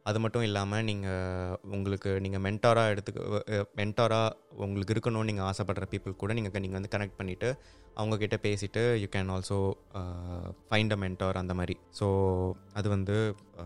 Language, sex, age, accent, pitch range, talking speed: Tamil, male, 20-39, native, 100-115 Hz, 145 wpm